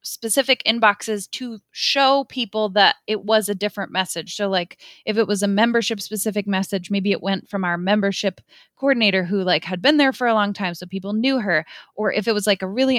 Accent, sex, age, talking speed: American, female, 20-39, 215 wpm